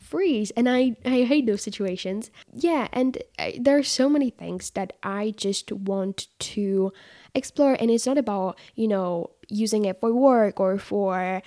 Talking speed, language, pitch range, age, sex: 165 wpm, English, 200-230 Hz, 10-29, female